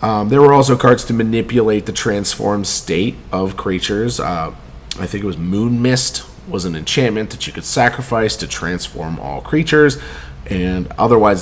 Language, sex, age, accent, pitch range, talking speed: English, male, 30-49, American, 85-115 Hz, 170 wpm